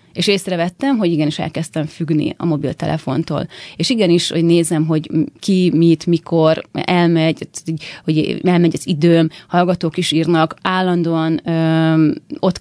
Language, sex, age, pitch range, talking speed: Hungarian, female, 30-49, 160-185 Hz, 130 wpm